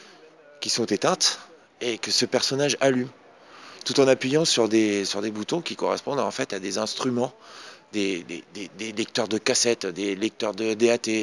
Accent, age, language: French, 30-49, French